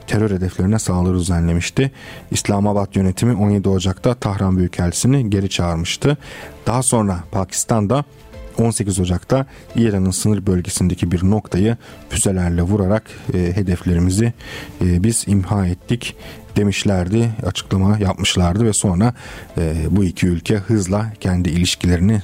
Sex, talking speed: male, 115 wpm